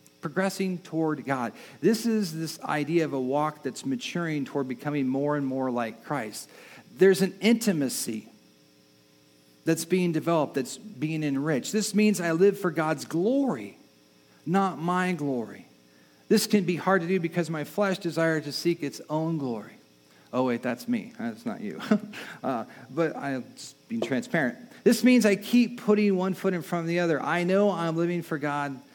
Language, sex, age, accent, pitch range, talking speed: English, male, 50-69, American, 140-190 Hz, 170 wpm